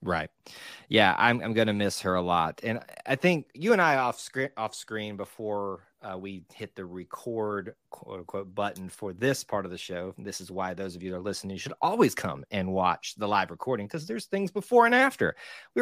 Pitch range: 95-120 Hz